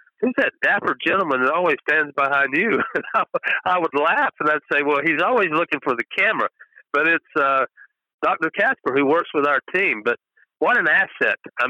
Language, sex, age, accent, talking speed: English, male, 50-69, American, 205 wpm